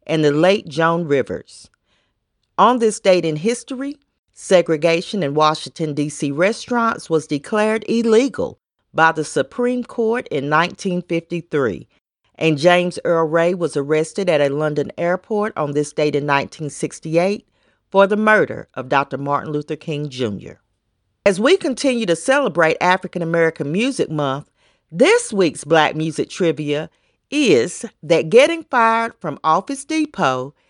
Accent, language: American, English